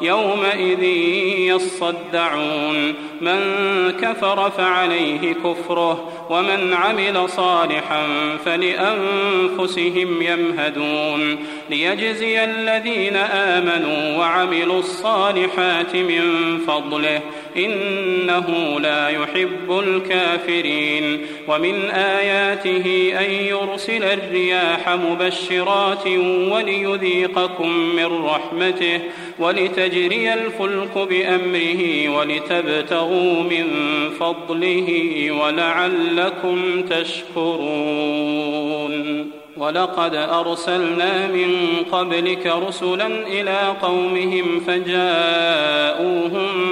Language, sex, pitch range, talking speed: Arabic, male, 165-185 Hz, 60 wpm